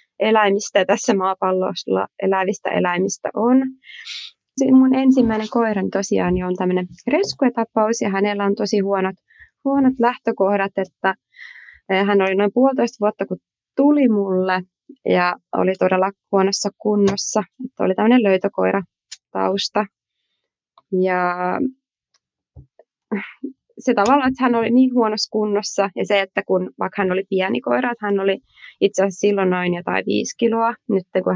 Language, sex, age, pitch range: Finnish, female, 20-39, 185-225 Hz